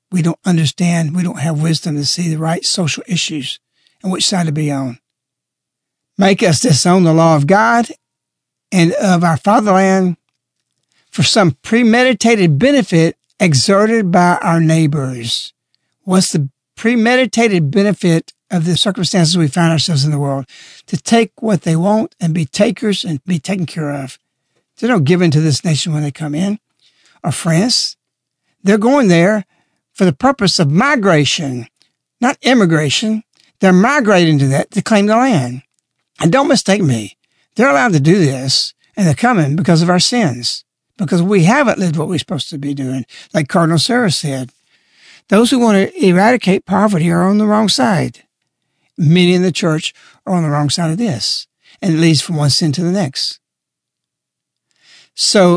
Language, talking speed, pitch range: English, 170 wpm, 155-205 Hz